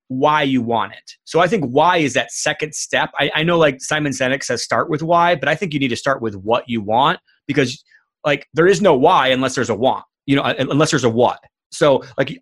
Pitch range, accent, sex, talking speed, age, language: 120-150 Hz, American, male, 245 wpm, 30-49, English